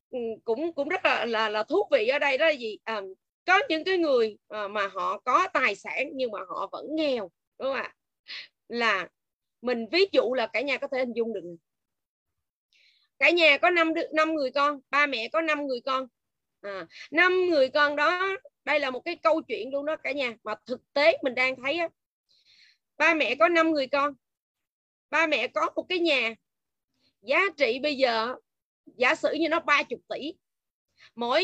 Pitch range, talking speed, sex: 230-315 Hz, 195 wpm, female